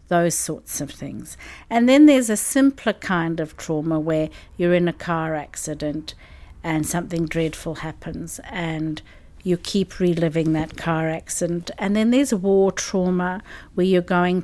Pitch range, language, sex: 165-205 Hz, English, female